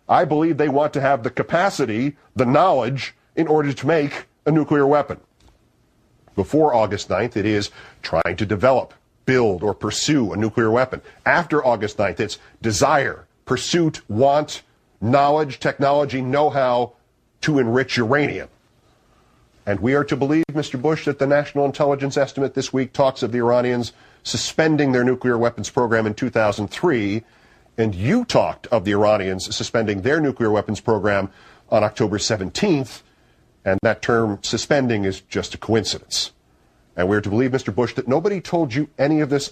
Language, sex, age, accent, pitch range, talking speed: English, male, 50-69, American, 105-140 Hz, 160 wpm